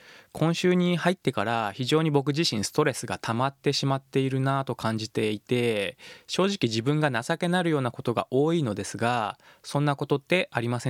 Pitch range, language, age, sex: 115-160 Hz, Japanese, 20-39, male